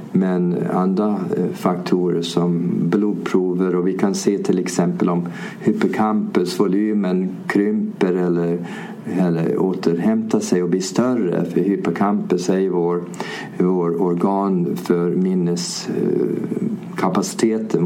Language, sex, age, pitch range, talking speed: English, male, 50-69, 90-115 Hz, 95 wpm